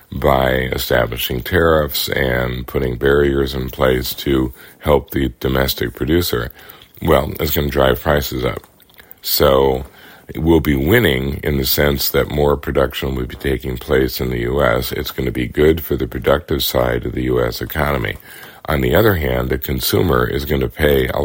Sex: male